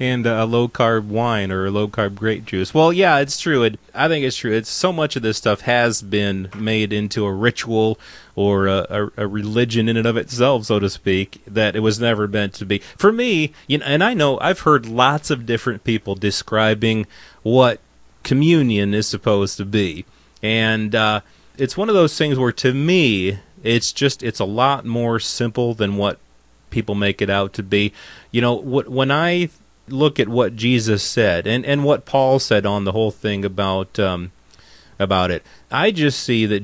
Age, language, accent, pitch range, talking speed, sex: 30-49, English, American, 105-130 Hz, 200 wpm, male